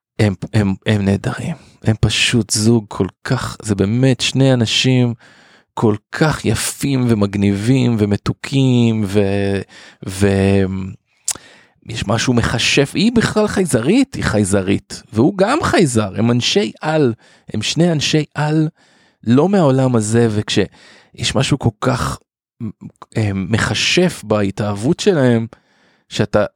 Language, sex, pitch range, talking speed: Hebrew, male, 105-140 Hz, 110 wpm